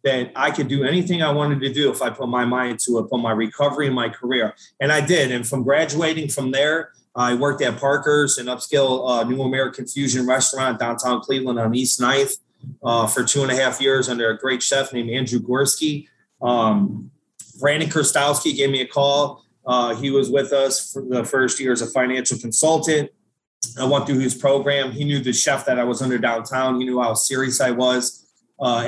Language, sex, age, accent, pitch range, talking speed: English, male, 30-49, American, 125-140 Hz, 210 wpm